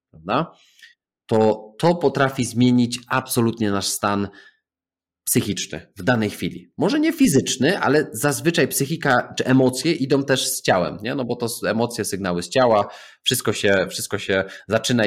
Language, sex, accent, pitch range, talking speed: Polish, male, native, 95-130 Hz, 145 wpm